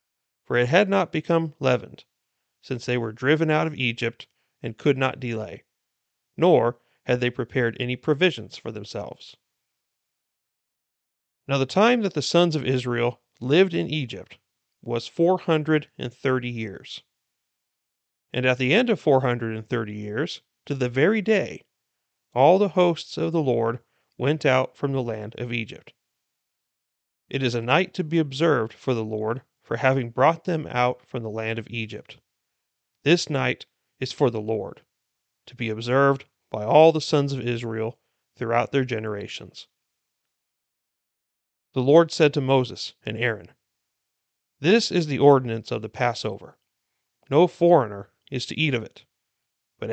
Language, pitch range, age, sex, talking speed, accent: English, 115-155 Hz, 40-59, male, 150 wpm, American